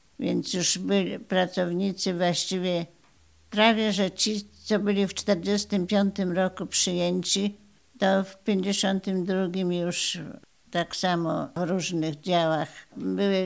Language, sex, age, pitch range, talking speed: Polish, female, 60-79, 160-190 Hz, 105 wpm